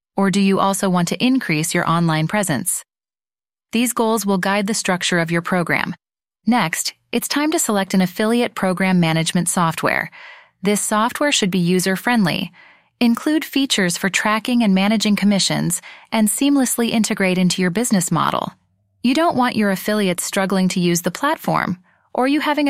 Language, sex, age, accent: English, female, 30-49, American